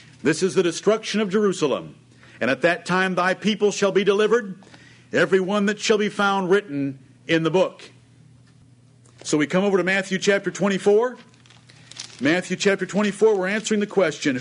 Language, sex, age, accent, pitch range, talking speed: English, male, 50-69, American, 165-210 Hz, 165 wpm